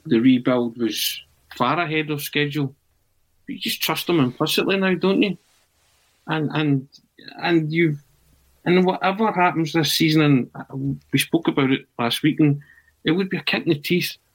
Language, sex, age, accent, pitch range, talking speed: English, male, 40-59, British, 120-150 Hz, 170 wpm